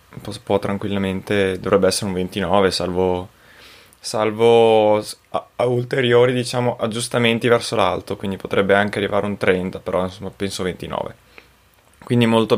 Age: 20-39